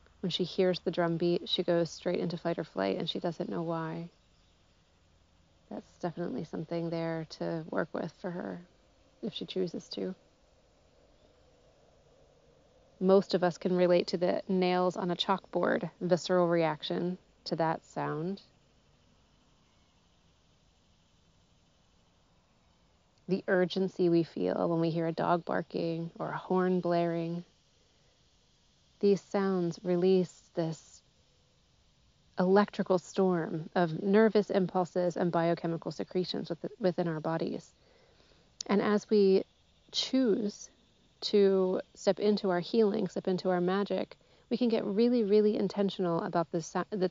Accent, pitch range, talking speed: American, 155-190 Hz, 125 wpm